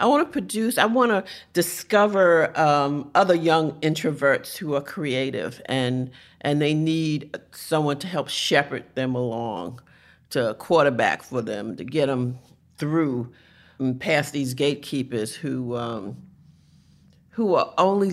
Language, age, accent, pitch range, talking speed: English, 50-69, American, 130-175 Hz, 140 wpm